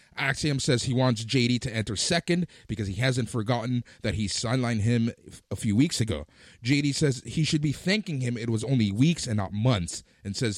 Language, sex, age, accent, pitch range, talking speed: English, male, 30-49, American, 110-160 Hz, 205 wpm